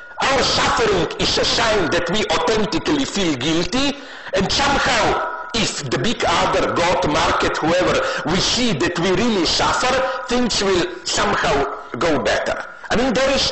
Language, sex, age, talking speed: English, male, 50-69, 150 wpm